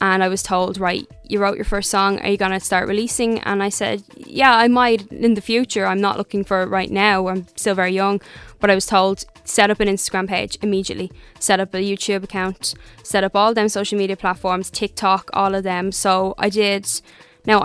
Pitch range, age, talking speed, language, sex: 190-215 Hz, 10-29, 220 wpm, Hungarian, female